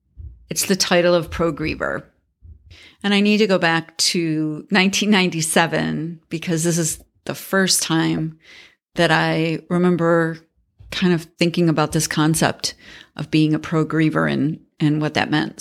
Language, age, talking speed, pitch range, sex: English, 40-59, 140 wpm, 160-185 Hz, female